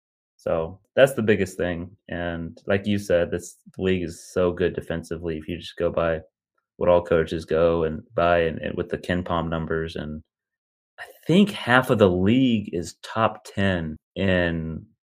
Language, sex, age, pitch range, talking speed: English, male, 30-49, 90-110 Hz, 170 wpm